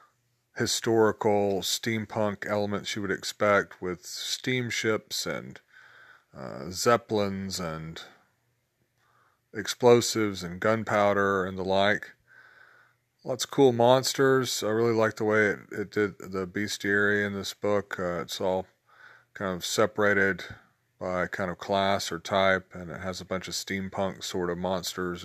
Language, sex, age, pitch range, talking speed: English, male, 40-59, 95-115 Hz, 135 wpm